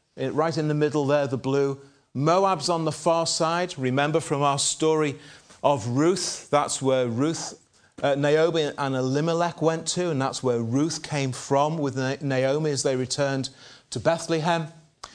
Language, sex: English, male